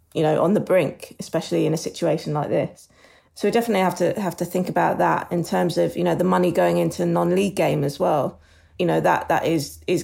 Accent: British